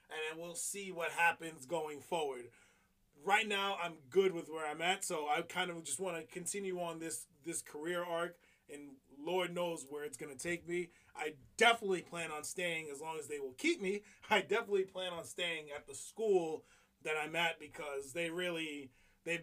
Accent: American